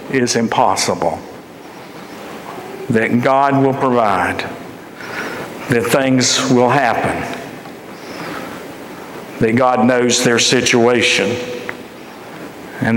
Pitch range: 120-150 Hz